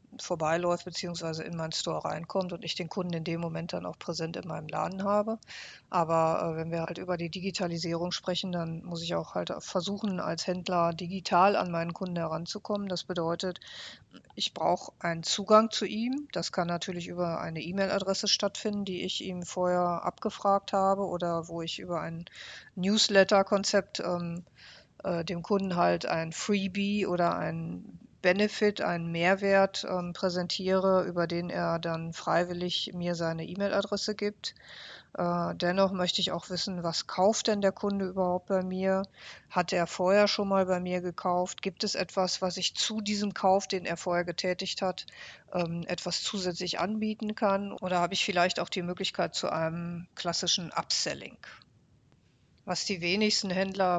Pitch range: 170-195 Hz